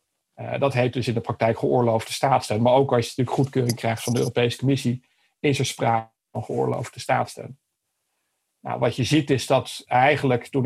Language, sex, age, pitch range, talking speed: Dutch, male, 50-69, 120-140 Hz, 185 wpm